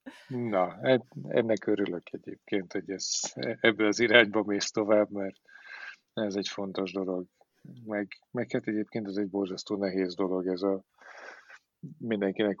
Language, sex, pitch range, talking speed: Hungarian, male, 100-110 Hz, 135 wpm